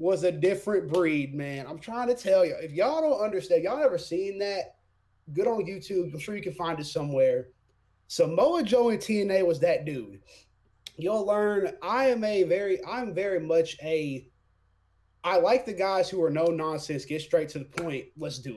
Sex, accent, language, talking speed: male, American, English, 195 wpm